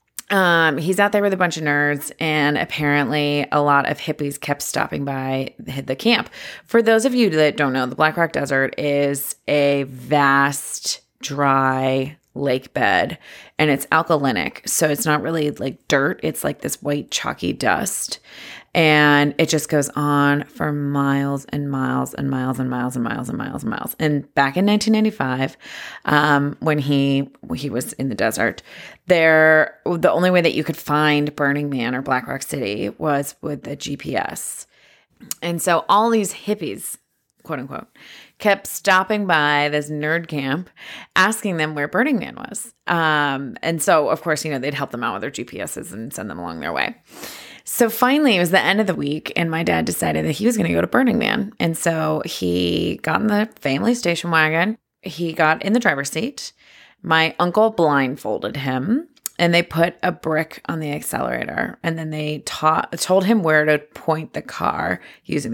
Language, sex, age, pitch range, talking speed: English, female, 30-49, 140-180 Hz, 185 wpm